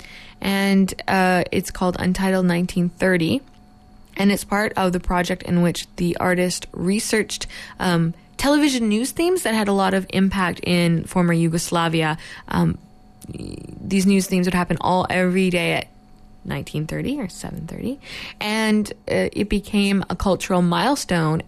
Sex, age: female, 20-39